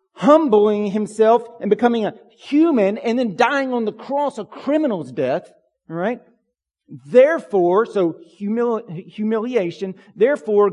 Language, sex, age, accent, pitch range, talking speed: English, male, 40-59, American, 135-220 Hz, 115 wpm